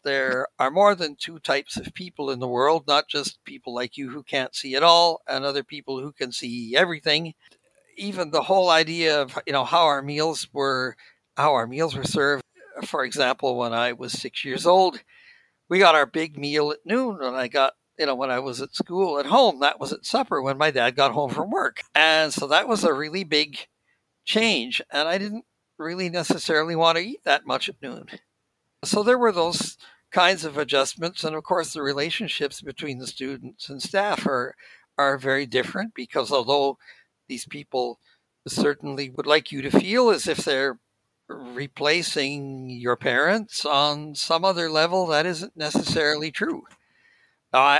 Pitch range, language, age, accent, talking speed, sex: 135-170 Hz, English, 60-79, American, 185 wpm, male